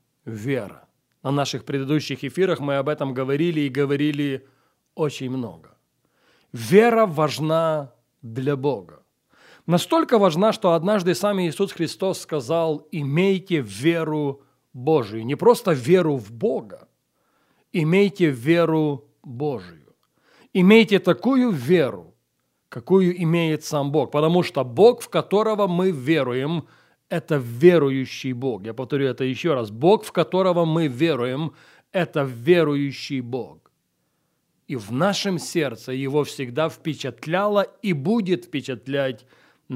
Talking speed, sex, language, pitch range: 115 wpm, male, Russian, 135-175 Hz